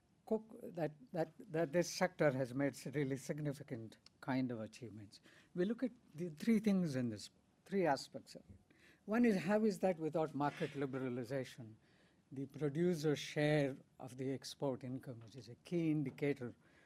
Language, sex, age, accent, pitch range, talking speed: English, female, 60-79, Indian, 130-170 Hz, 155 wpm